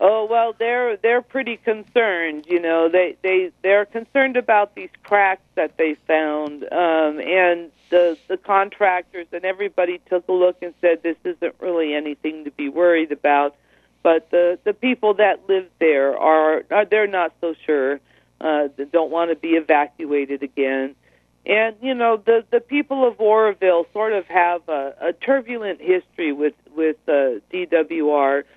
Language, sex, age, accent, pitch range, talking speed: English, female, 50-69, American, 155-195 Hz, 165 wpm